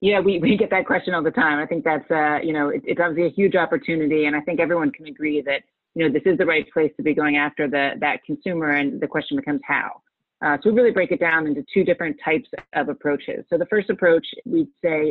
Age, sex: 30-49, female